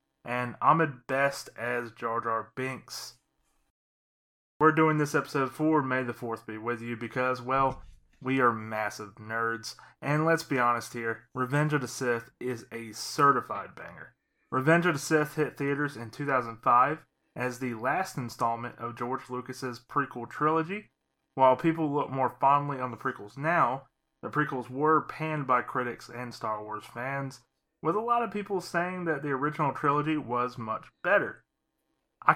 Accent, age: American, 30-49